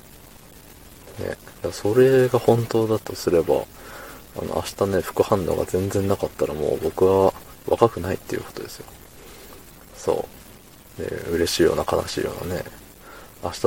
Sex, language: male, Japanese